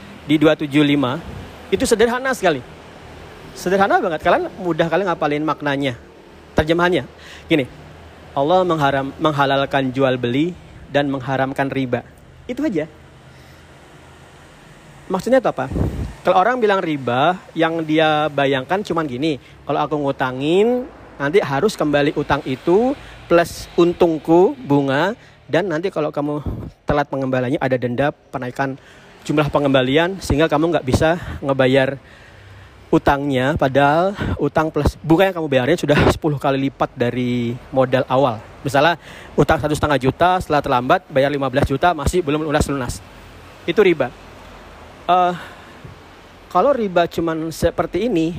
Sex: male